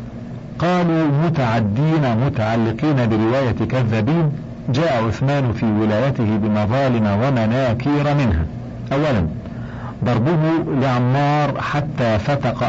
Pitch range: 110-135 Hz